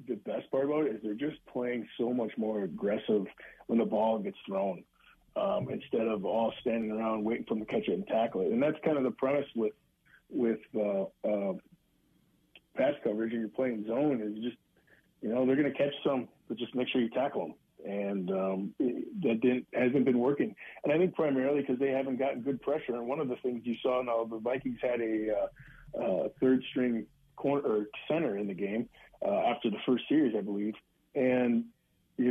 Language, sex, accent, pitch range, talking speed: English, male, American, 115-140 Hz, 210 wpm